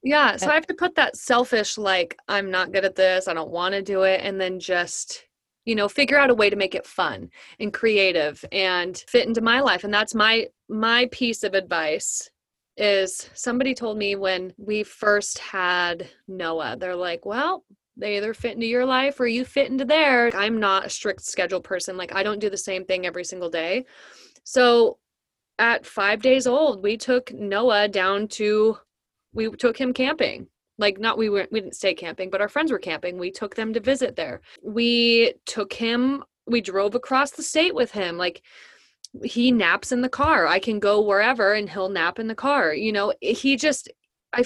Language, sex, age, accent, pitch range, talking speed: English, female, 20-39, American, 190-245 Hz, 200 wpm